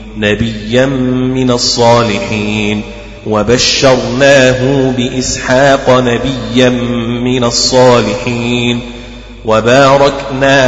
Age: 30-49